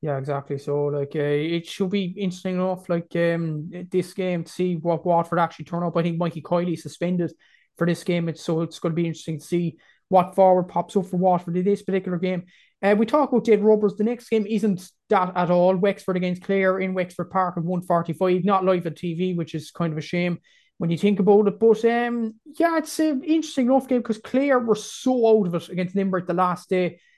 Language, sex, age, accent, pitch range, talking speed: English, male, 20-39, Irish, 175-215 Hz, 235 wpm